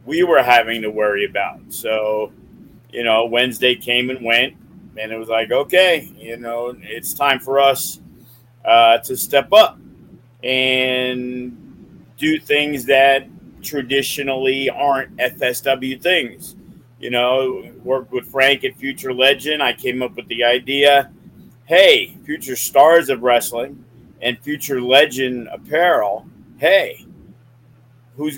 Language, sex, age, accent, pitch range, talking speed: English, male, 50-69, American, 125-150 Hz, 130 wpm